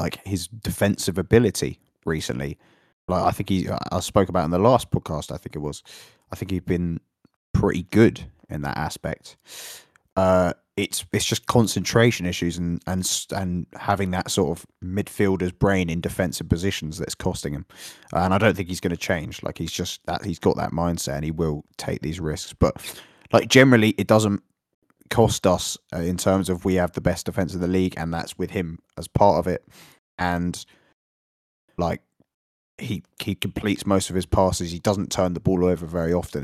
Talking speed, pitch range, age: 190 wpm, 85-100 Hz, 20-39